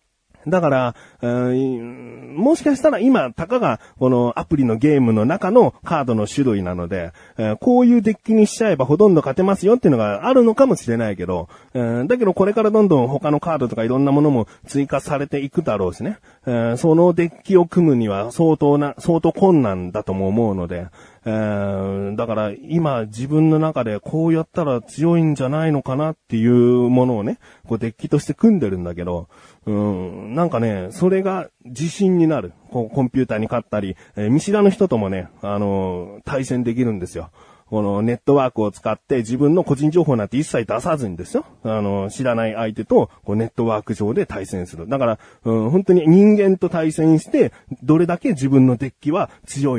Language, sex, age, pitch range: Japanese, male, 30-49, 110-165 Hz